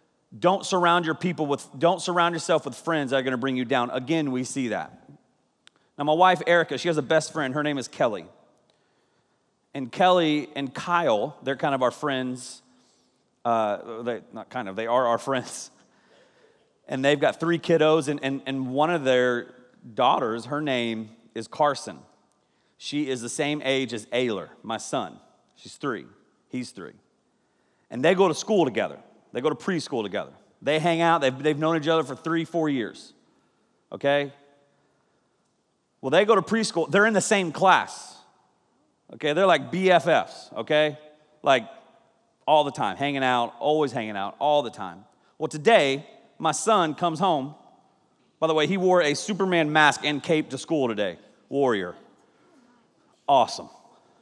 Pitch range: 130-165 Hz